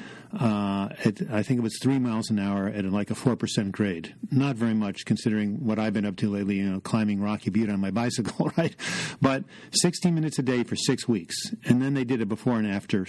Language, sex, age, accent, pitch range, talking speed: English, male, 50-69, American, 110-130 Hz, 225 wpm